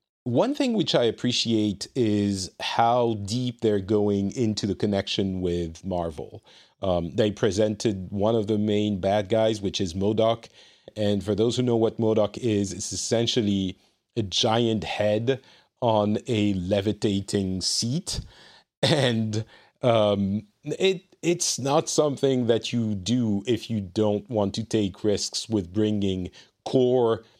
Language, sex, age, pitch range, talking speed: English, male, 40-59, 100-115 Hz, 140 wpm